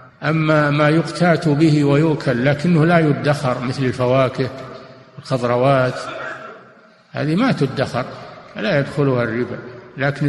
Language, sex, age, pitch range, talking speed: Arabic, male, 50-69, 130-155 Hz, 105 wpm